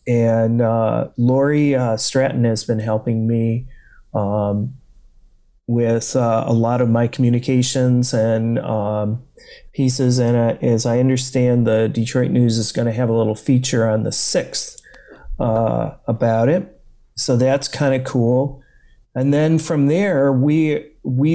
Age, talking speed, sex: 40-59, 145 wpm, male